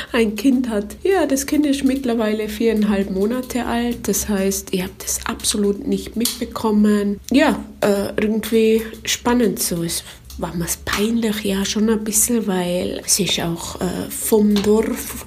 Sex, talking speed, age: female, 155 wpm, 20-39